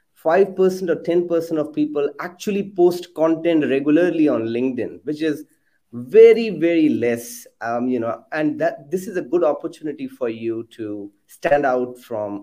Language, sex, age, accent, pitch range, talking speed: English, male, 30-49, Indian, 125-175 Hz, 150 wpm